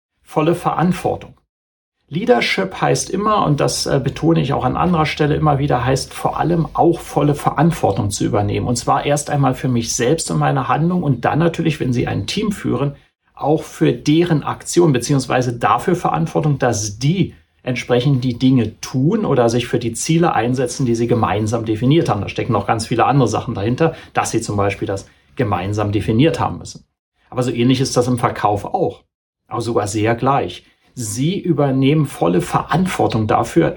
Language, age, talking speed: German, 40-59, 175 wpm